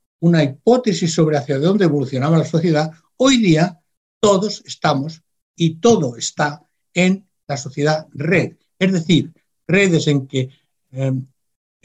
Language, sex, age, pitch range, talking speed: Spanish, male, 60-79, 140-185 Hz, 125 wpm